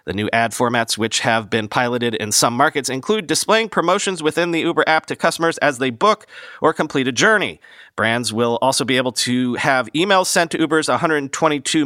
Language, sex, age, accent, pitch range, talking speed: English, male, 40-59, American, 120-170 Hz, 195 wpm